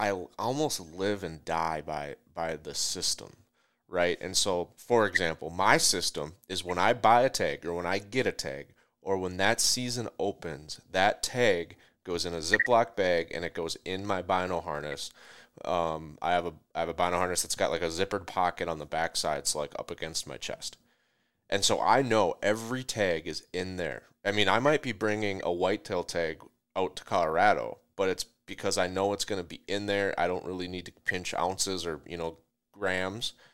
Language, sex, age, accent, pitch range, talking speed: English, male, 30-49, American, 90-110 Hz, 205 wpm